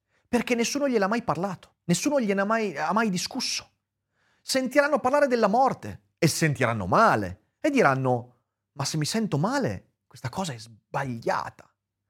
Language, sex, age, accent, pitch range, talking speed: Italian, male, 30-49, native, 120-195 Hz, 145 wpm